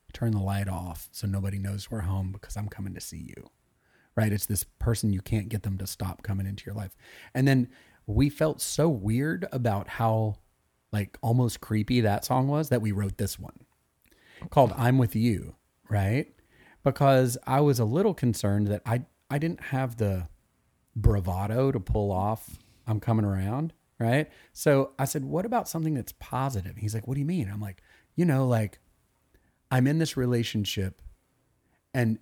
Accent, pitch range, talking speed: American, 100-125 Hz, 180 wpm